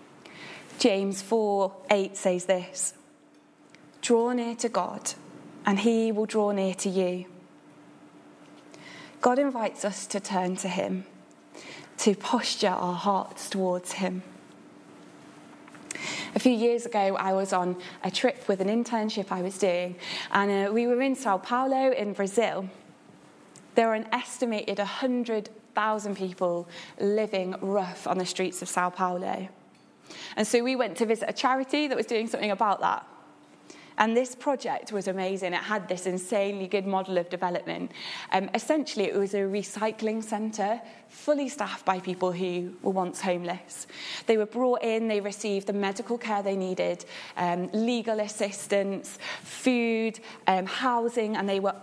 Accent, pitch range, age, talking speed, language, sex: British, 190-230 Hz, 20-39, 150 wpm, English, female